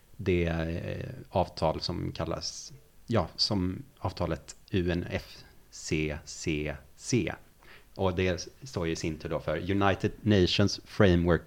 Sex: male